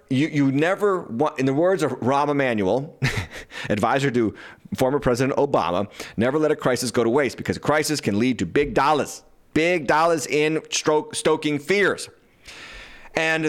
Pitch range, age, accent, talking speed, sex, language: 115-155 Hz, 30-49, American, 165 wpm, male, English